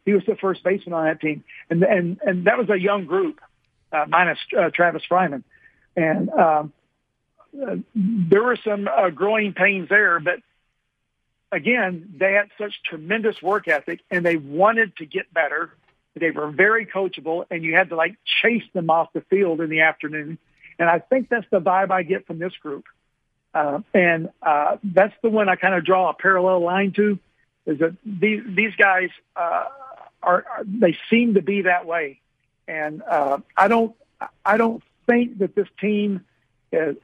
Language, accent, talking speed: English, American, 180 wpm